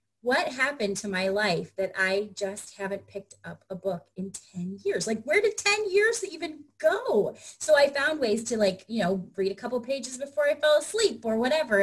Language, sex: English, female